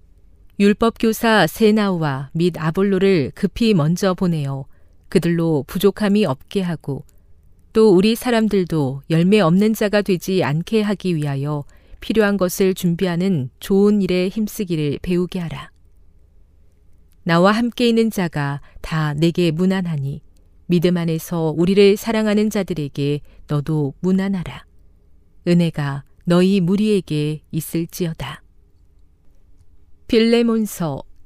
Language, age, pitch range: Korean, 40-59, 140-200 Hz